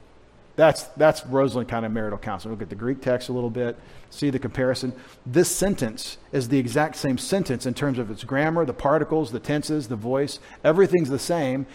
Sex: male